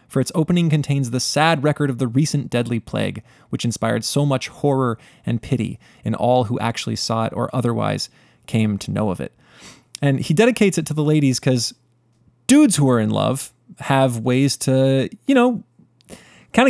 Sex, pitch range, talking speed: male, 120-165 Hz, 185 wpm